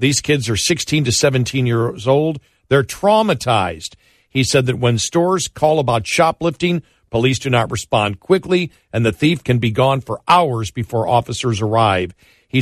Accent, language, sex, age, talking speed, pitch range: American, English, male, 50-69, 165 wpm, 115-145 Hz